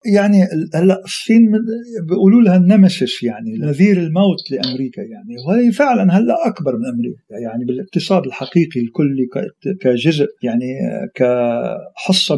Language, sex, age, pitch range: Arabic, male, 50-69, 135-200 Hz